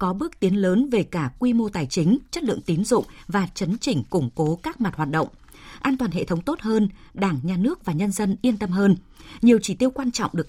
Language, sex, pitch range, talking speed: Vietnamese, female, 165-220 Hz, 250 wpm